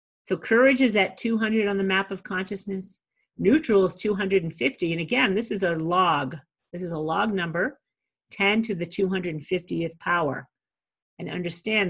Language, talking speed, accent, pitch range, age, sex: English, 155 wpm, American, 170-215 Hz, 50-69, female